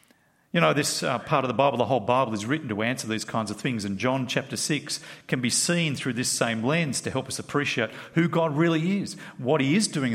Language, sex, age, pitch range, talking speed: English, male, 50-69, 125-170 Hz, 250 wpm